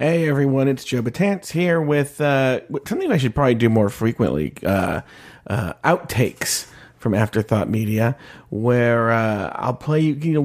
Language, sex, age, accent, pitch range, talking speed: English, male, 30-49, American, 110-140 Hz, 155 wpm